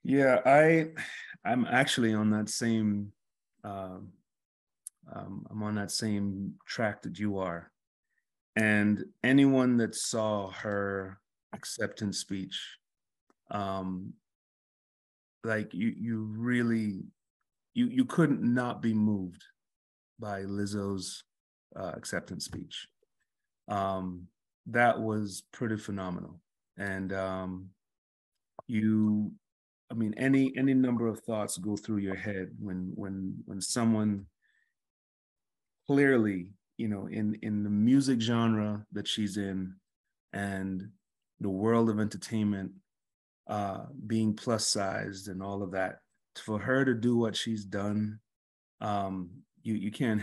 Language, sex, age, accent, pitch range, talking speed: English, male, 30-49, American, 95-115 Hz, 115 wpm